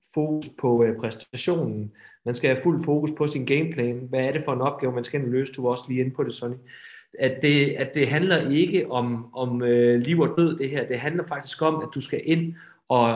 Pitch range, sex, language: 115-145 Hz, male, Danish